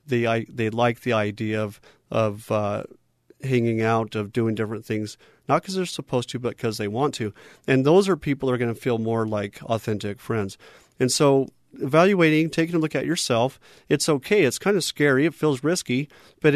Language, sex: English, male